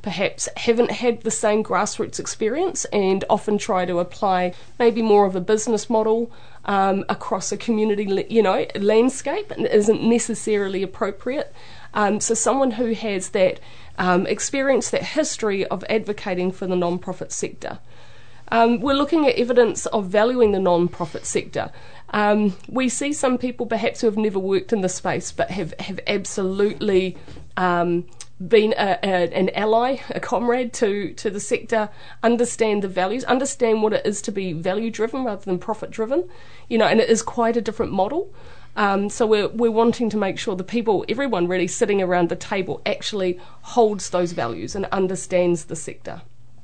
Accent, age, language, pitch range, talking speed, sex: Australian, 30-49, English, 185-230 Hz, 175 wpm, female